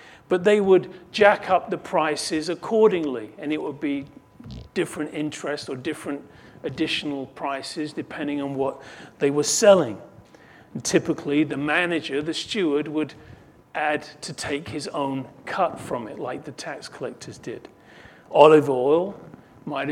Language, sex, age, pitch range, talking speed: English, male, 40-59, 150-205 Hz, 140 wpm